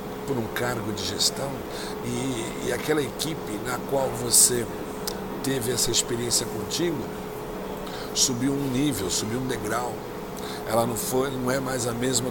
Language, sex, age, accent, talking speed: Portuguese, male, 60-79, Brazilian, 140 wpm